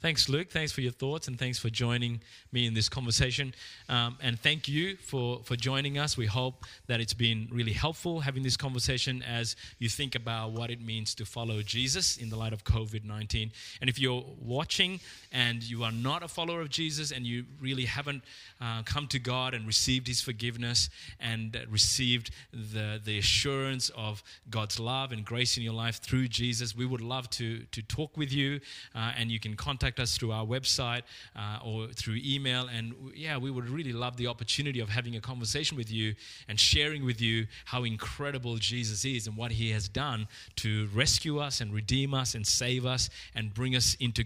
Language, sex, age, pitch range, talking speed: English, male, 20-39, 110-130 Hz, 200 wpm